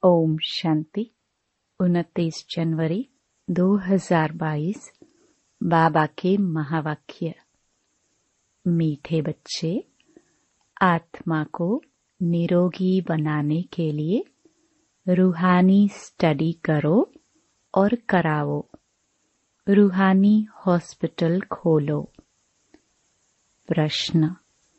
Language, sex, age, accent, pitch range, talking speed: Hindi, female, 30-49, native, 165-210 Hz, 55 wpm